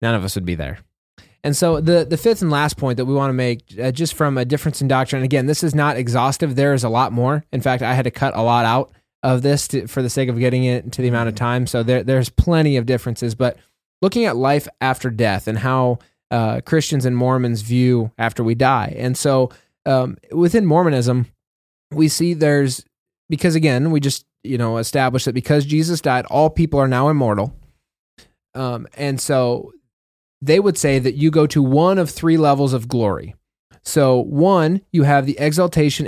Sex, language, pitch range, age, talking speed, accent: male, English, 125-150 Hz, 20-39, 210 wpm, American